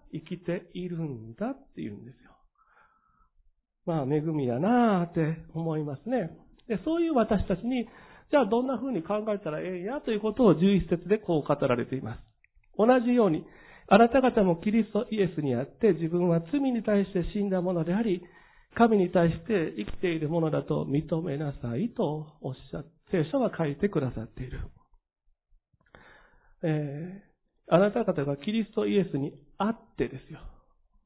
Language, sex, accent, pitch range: Japanese, male, native, 160-230 Hz